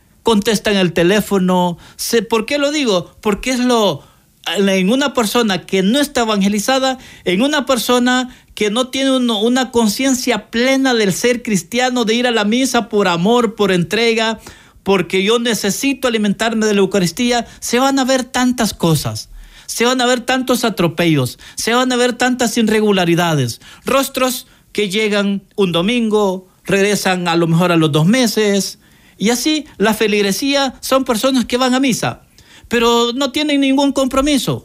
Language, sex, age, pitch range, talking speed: Spanish, male, 50-69, 185-250 Hz, 160 wpm